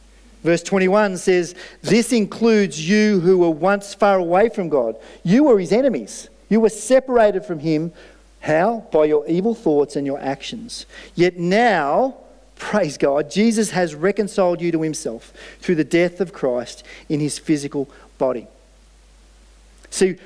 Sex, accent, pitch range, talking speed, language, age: male, Australian, 170-215 Hz, 150 wpm, English, 40-59